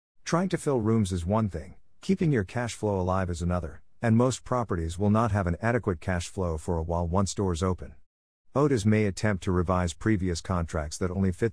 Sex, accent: male, American